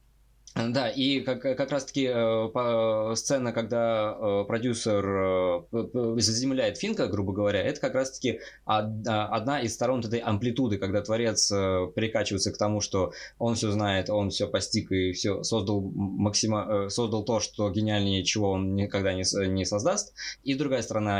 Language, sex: Russian, male